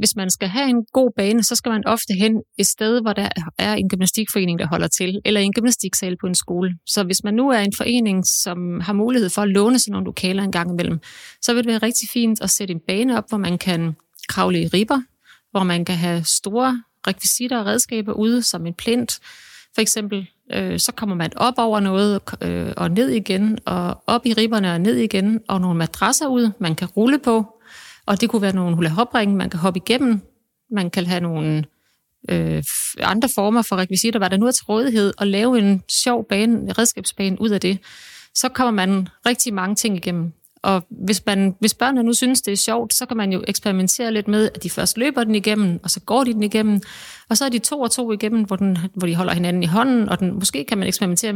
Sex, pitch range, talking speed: female, 185-230 Hz, 225 wpm